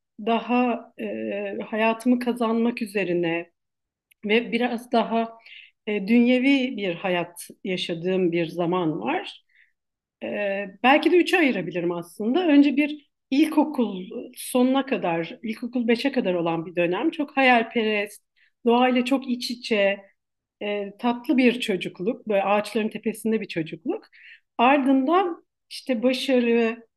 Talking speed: 115 wpm